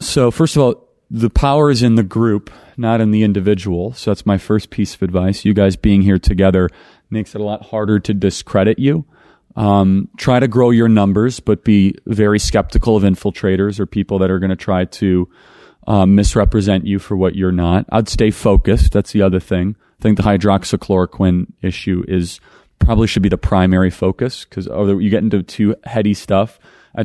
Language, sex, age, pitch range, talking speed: English, male, 30-49, 95-115 Hz, 195 wpm